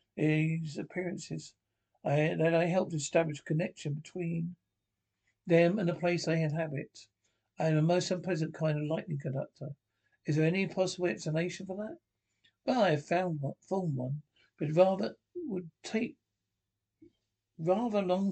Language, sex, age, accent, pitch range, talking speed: English, male, 60-79, British, 150-180 Hz, 145 wpm